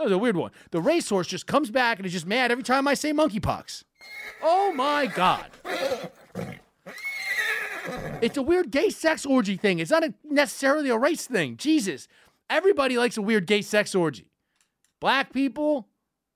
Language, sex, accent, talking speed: English, male, American, 165 wpm